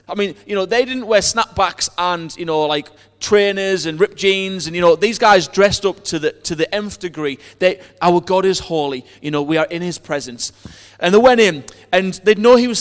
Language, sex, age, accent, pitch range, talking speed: English, male, 30-49, British, 140-215 Hz, 235 wpm